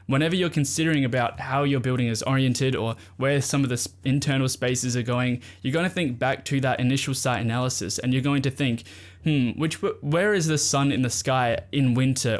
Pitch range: 115-140 Hz